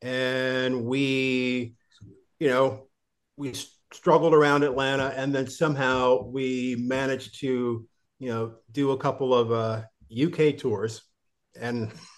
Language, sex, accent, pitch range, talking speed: English, male, American, 120-135 Hz, 120 wpm